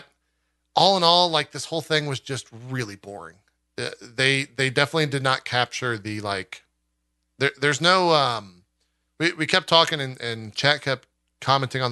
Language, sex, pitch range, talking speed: English, male, 110-145 Hz, 165 wpm